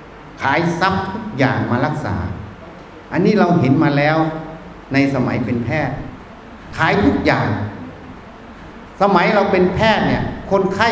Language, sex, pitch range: Thai, male, 145-200 Hz